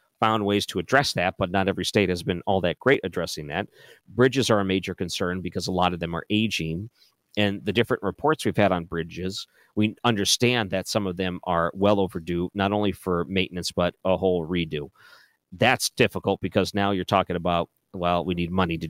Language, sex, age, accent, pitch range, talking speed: English, male, 40-59, American, 90-115 Hz, 205 wpm